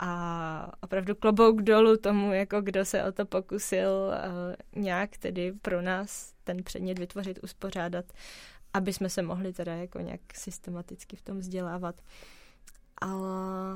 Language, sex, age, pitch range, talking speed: Czech, female, 20-39, 175-200 Hz, 140 wpm